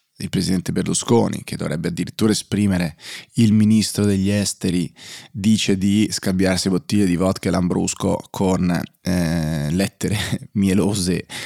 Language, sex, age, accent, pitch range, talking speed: Italian, male, 30-49, native, 95-105 Hz, 115 wpm